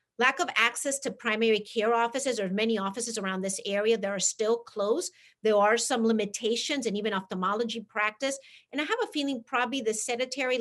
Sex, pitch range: female, 205-240 Hz